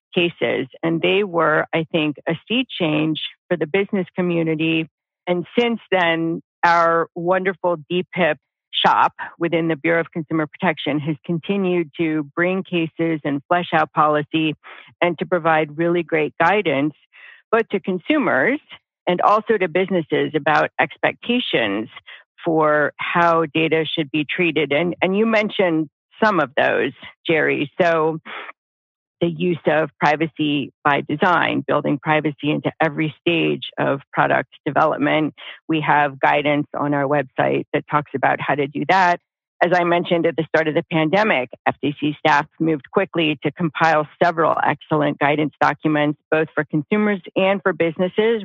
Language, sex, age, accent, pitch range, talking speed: English, female, 50-69, American, 150-175 Hz, 145 wpm